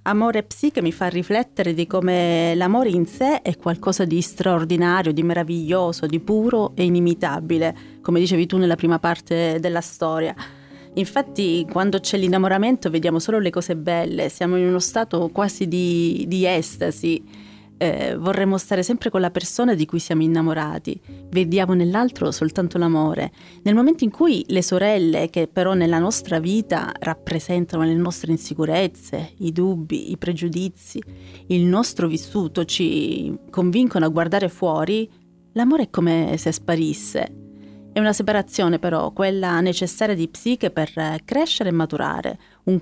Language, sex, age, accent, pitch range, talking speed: Italian, female, 30-49, native, 165-195 Hz, 145 wpm